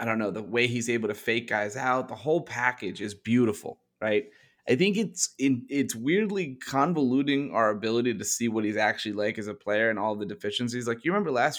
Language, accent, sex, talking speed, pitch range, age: English, American, male, 225 wpm, 105-130 Hz, 30-49